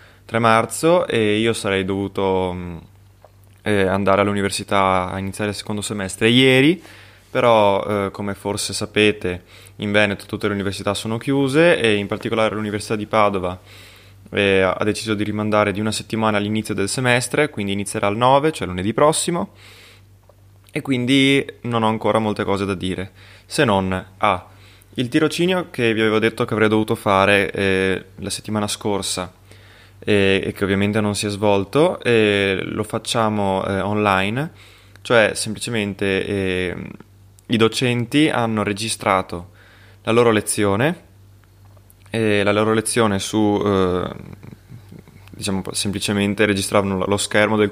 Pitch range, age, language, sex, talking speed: 95-110 Hz, 20-39, Italian, male, 140 wpm